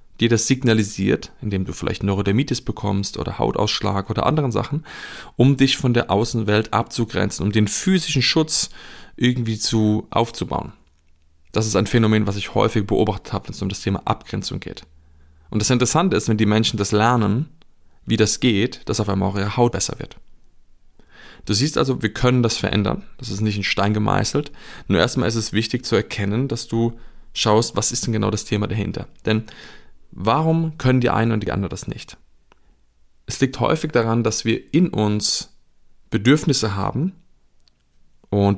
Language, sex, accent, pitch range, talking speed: German, male, German, 100-125 Hz, 175 wpm